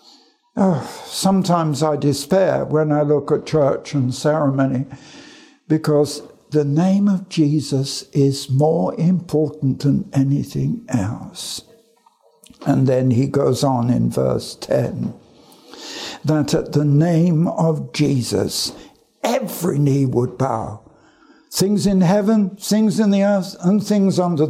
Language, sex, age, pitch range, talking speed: English, male, 60-79, 155-230 Hz, 120 wpm